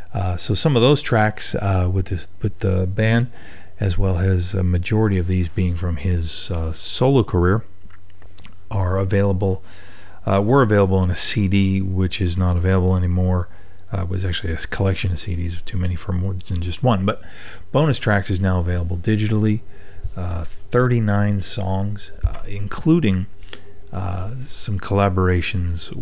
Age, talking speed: 40-59, 160 wpm